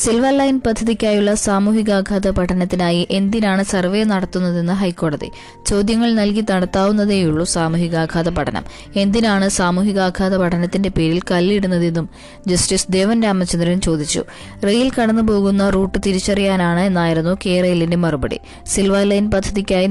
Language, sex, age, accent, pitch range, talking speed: Malayalam, female, 20-39, native, 180-205 Hz, 100 wpm